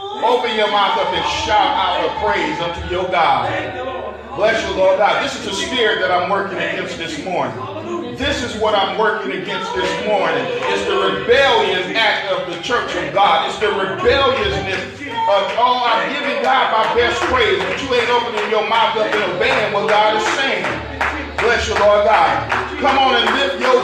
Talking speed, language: 190 wpm, English